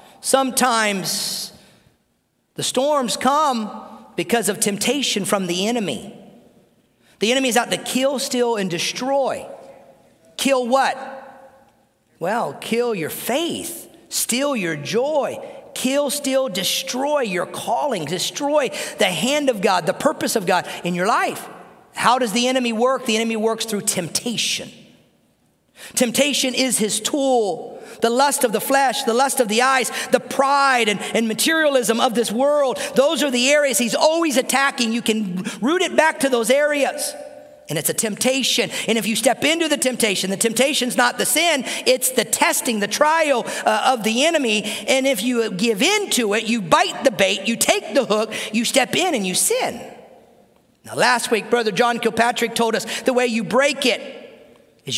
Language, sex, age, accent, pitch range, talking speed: English, male, 50-69, American, 220-275 Hz, 165 wpm